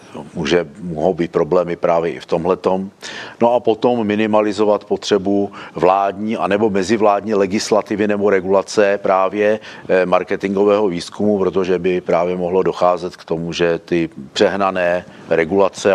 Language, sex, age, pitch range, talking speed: Czech, male, 50-69, 80-95 Hz, 130 wpm